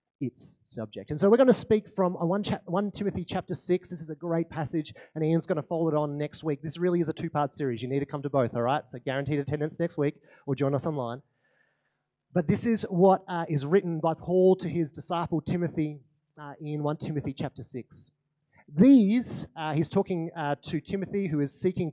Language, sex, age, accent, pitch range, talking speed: English, male, 30-49, Australian, 145-190 Hz, 220 wpm